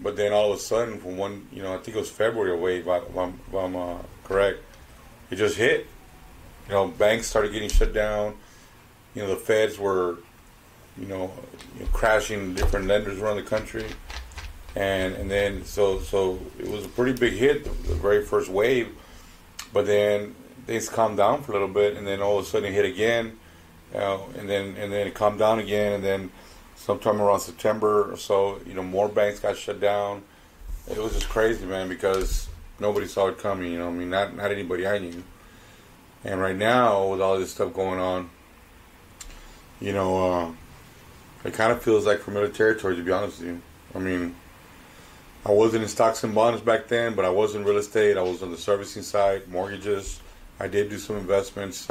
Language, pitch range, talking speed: English, 90-105 Hz, 200 wpm